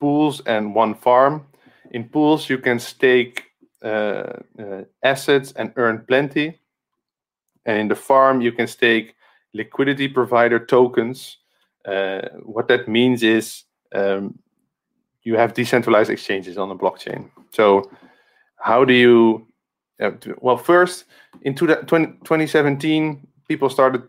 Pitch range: 110-130 Hz